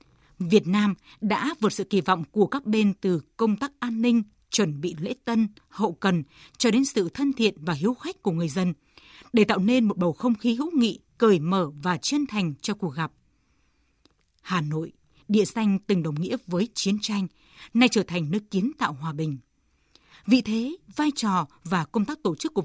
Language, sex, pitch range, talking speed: Vietnamese, female, 175-230 Hz, 205 wpm